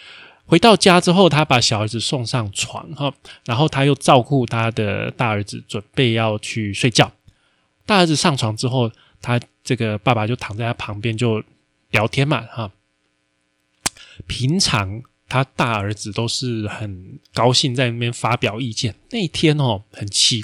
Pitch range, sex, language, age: 105-145 Hz, male, Chinese, 20-39